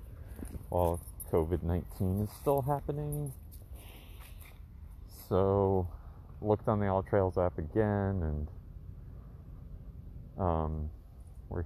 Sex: male